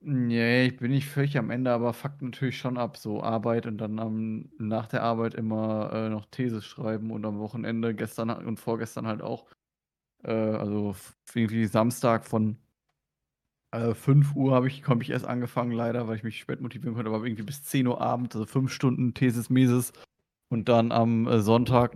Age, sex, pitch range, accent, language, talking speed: 20-39, male, 115-130 Hz, German, German, 185 wpm